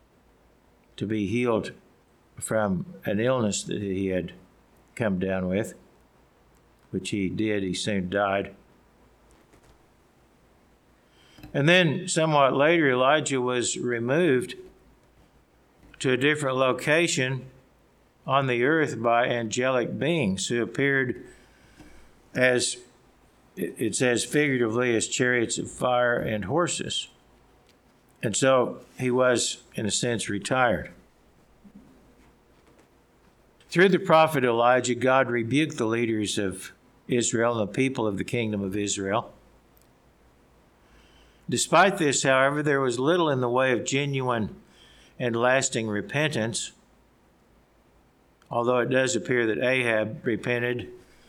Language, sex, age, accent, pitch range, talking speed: English, male, 60-79, American, 105-130 Hz, 110 wpm